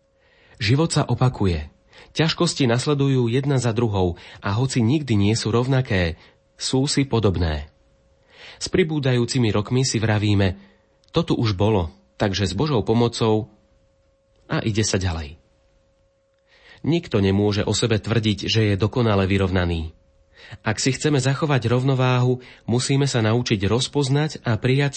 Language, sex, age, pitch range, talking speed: Slovak, male, 30-49, 100-130 Hz, 125 wpm